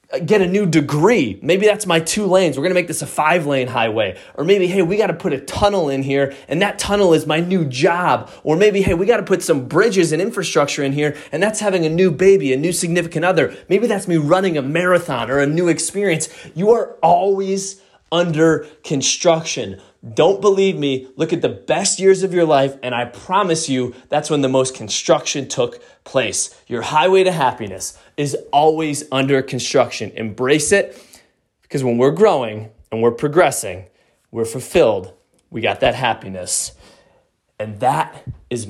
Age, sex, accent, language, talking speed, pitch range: 20-39, male, American, English, 190 wpm, 135-185 Hz